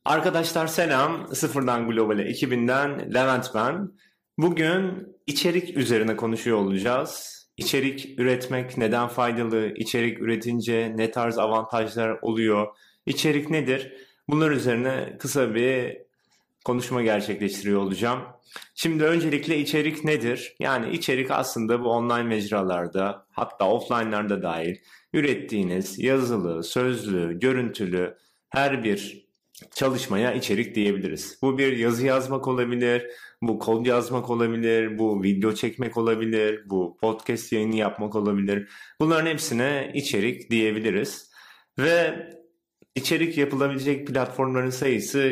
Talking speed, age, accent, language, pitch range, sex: 105 wpm, 30-49, native, Turkish, 105-135 Hz, male